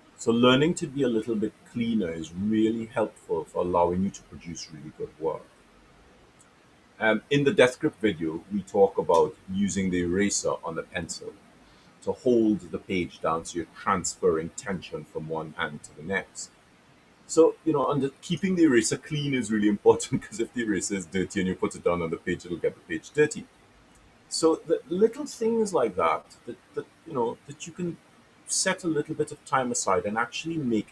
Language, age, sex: English, 30-49, male